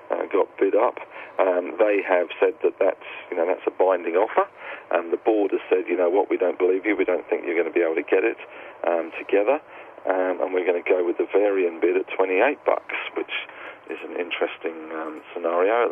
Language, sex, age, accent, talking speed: English, male, 40-59, British, 230 wpm